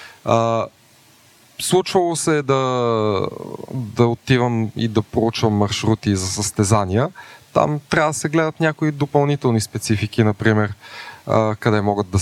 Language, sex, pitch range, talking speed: Bulgarian, male, 100-130 Hz, 130 wpm